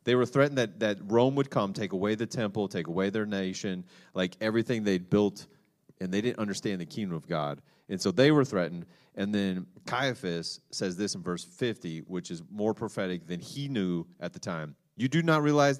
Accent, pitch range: American, 85-115 Hz